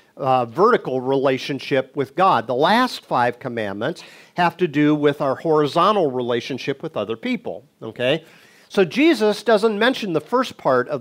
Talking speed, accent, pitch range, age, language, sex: 155 wpm, American, 140-200 Hz, 50-69, English, male